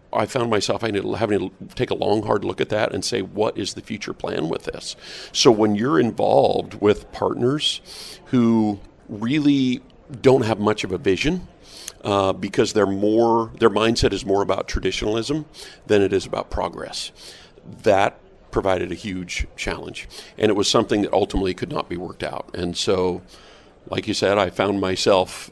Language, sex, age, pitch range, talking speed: English, male, 50-69, 95-110 Hz, 175 wpm